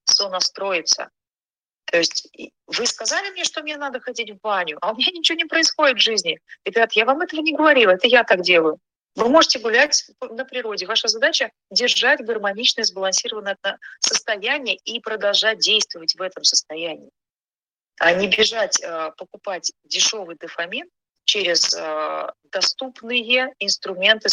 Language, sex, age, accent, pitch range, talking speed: Russian, female, 30-49, native, 185-255 Hz, 140 wpm